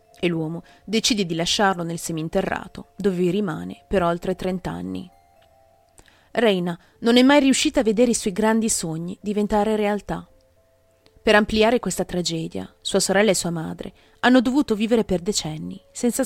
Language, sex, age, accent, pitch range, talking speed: Italian, female, 30-49, native, 160-220 Hz, 150 wpm